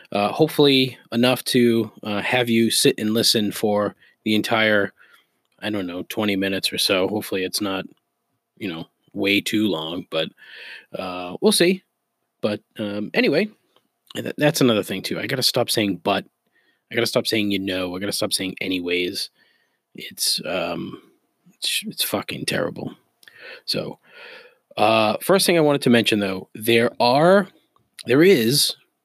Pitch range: 100-120 Hz